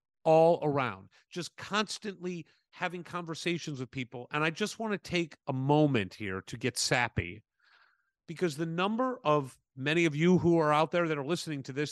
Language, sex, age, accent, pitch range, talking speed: English, male, 40-59, American, 130-170 Hz, 180 wpm